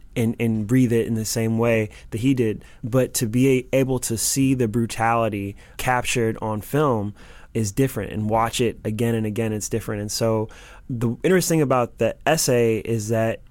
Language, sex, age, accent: English, male, 20-39, American